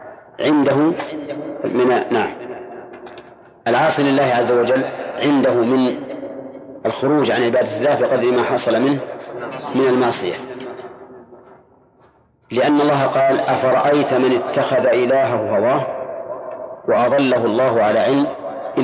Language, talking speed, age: Arabic, 100 wpm, 40-59